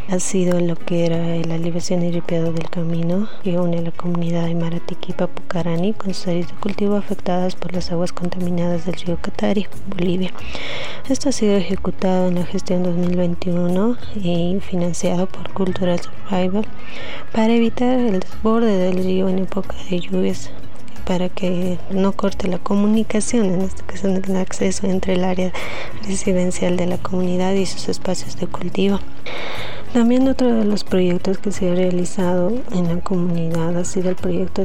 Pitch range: 175-195 Hz